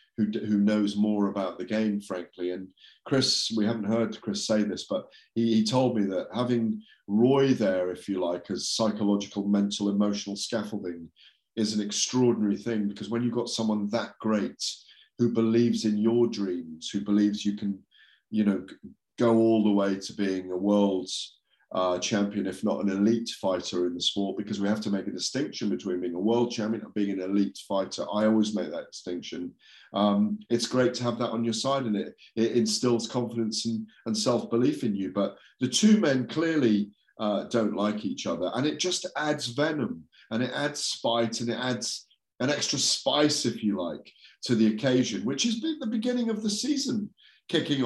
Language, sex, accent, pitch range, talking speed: English, male, British, 100-120 Hz, 195 wpm